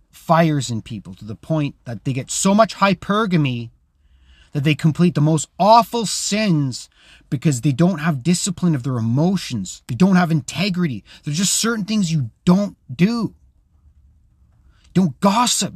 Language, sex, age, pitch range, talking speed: English, male, 30-49, 115-190 Hz, 150 wpm